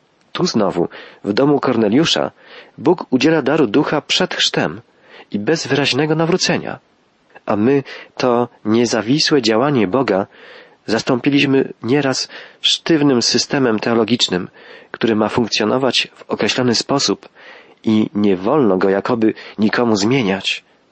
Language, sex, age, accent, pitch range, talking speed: Polish, male, 40-59, native, 110-140 Hz, 110 wpm